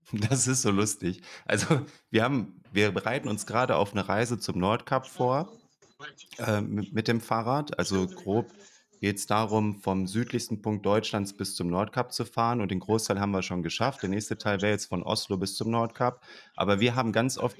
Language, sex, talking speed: German, male, 200 wpm